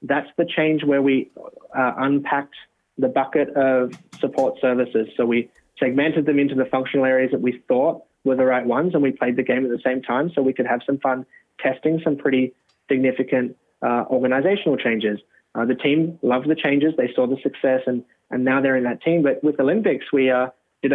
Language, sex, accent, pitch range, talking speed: English, male, Australian, 125-145 Hz, 205 wpm